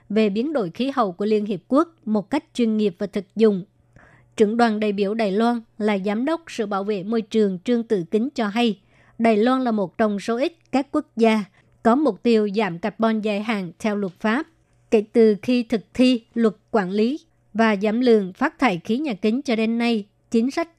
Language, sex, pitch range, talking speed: Vietnamese, male, 210-235 Hz, 220 wpm